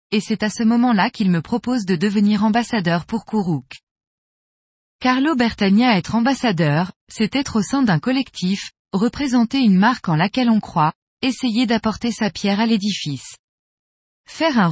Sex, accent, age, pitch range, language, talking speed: female, French, 20-39, 185-245 Hz, French, 155 wpm